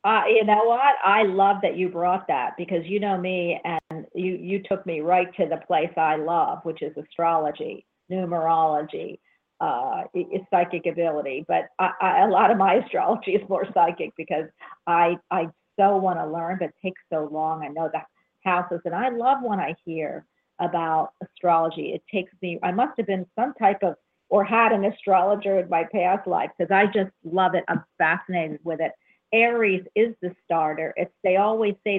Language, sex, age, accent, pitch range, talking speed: English, female, 50-69, American, 170-205 Hz, 195 wpm